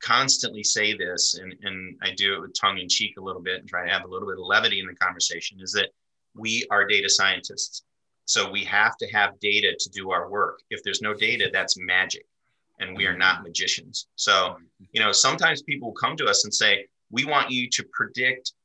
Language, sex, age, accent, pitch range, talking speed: English, male, 30-49, American, 95-130 Hz, 220 wpm